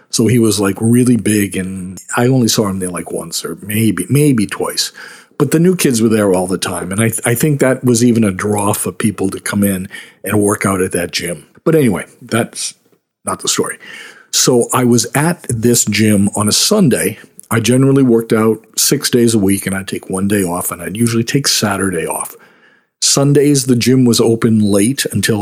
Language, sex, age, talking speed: English, male, 50-69, 210 wpm